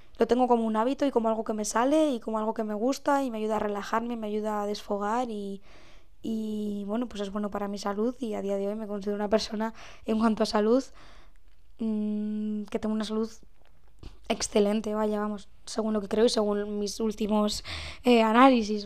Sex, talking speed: female, 210 wpm